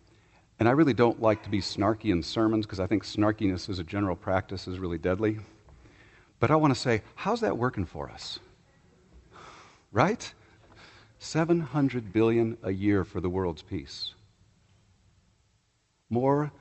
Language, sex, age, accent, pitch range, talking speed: English, male, 50-69, American, 90-110 Hz, 150 wpm